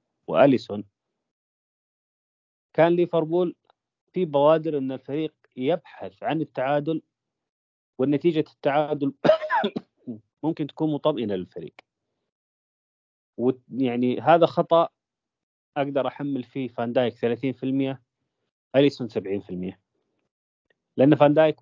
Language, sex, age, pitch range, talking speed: Arabic, male, 30-49, 120-150 Hz, 85 wpm